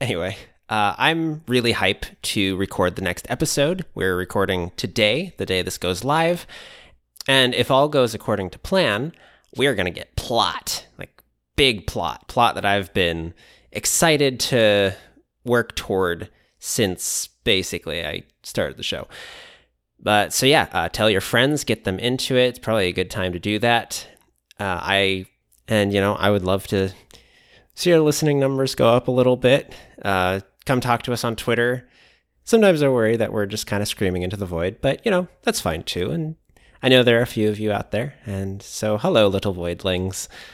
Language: English